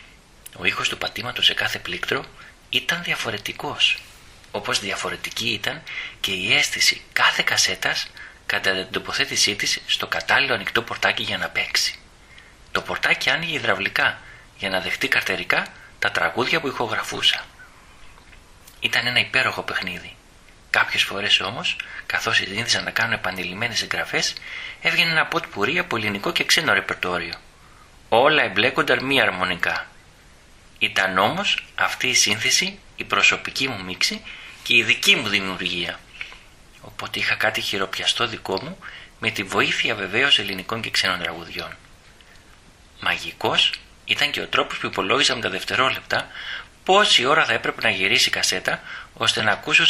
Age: 30-49